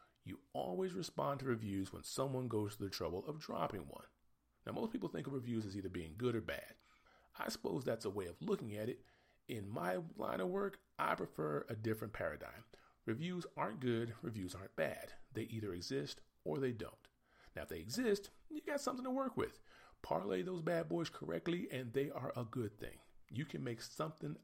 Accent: American